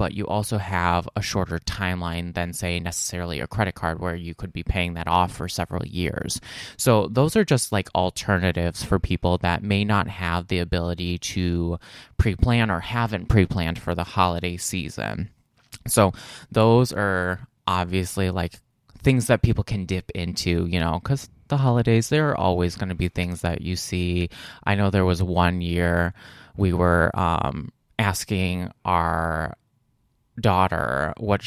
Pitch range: 85-105 Hz